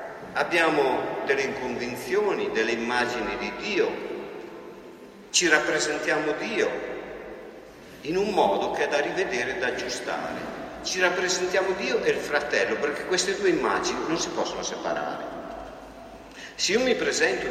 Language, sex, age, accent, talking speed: Italian, male, 50-69, native, 130 wpm